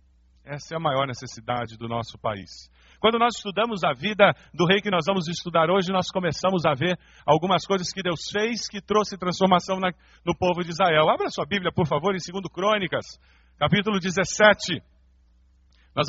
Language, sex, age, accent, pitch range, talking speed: Portuguese, male, 50-69, Brazilian, 160-215 Hz, 180 wpm